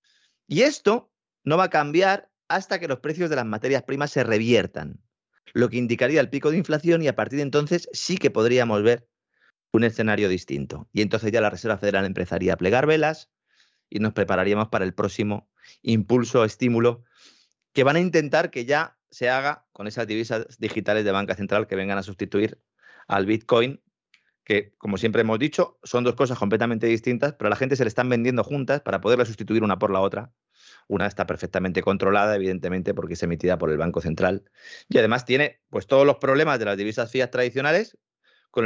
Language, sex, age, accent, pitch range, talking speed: Spanish, male, 30-49, Spanish, 100-140 Hz, 195 wpm